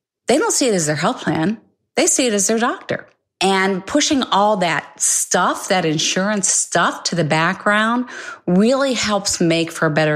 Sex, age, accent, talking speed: female, 40-59, American, 185 wpm